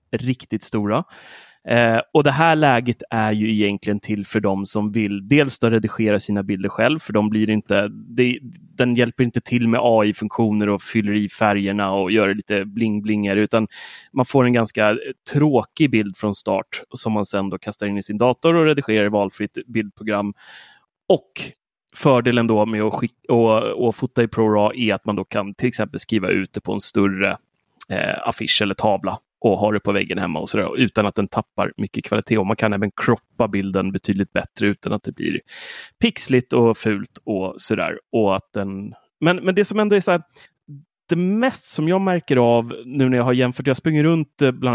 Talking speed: 195 wpm